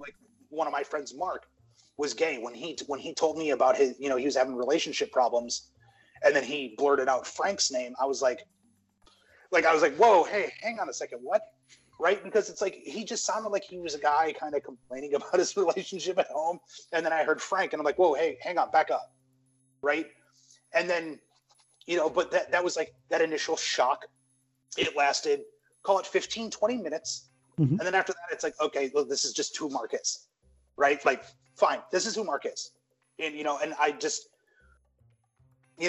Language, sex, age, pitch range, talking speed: English, male, 30-49, 135-225 Hz, 210 wpm